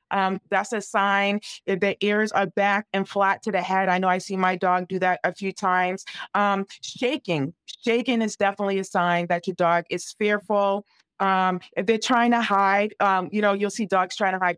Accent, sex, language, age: American, female, English, 40-59